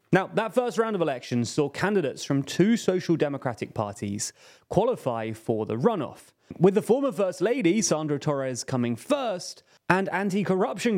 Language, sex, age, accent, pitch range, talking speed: English, male, 30-49, British, 130-190 Hz, 155 wpm